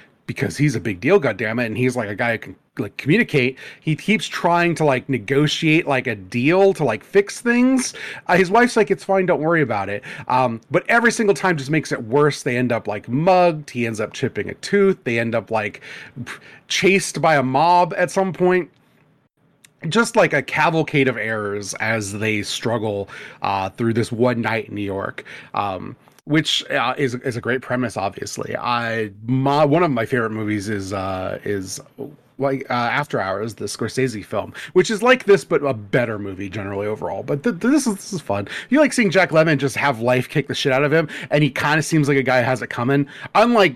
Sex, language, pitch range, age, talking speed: male, English, 115-160 Hz, 30-49, 215 wpm